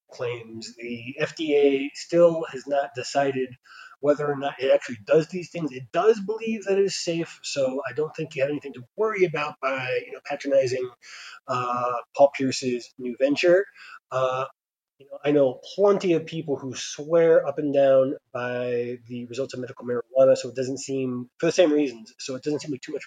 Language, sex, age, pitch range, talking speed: English, male, 20-39, 130-170 Hz, 190 wpm